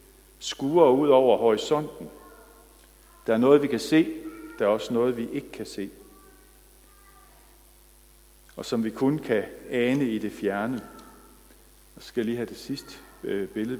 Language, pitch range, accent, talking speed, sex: Danish, 105-135 Hz, native, 150 wpm, male